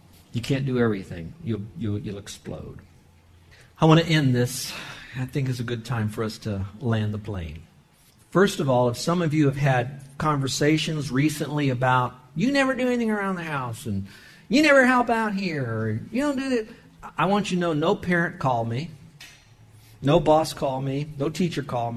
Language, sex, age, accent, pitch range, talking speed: English, male, 50-69, American, 115-155 Hz, 190 wpm